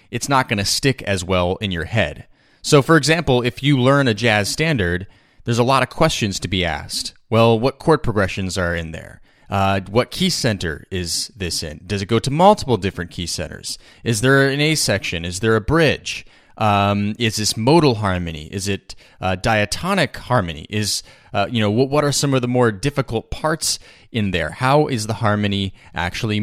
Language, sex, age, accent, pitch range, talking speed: English, male, 30-49, American, 100-130 Hz, 195 wpm